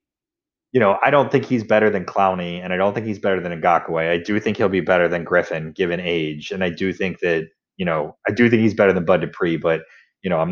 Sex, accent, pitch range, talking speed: male, American, 90-115 Hz, 260 wpm